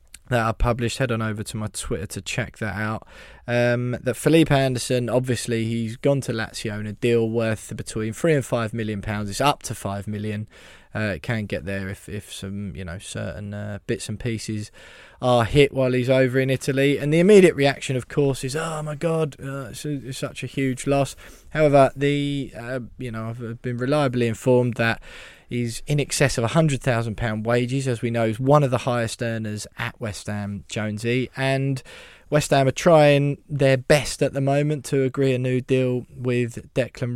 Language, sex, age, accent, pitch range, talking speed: English, male, 20-39, British, 110-135 Hz, 200 wpm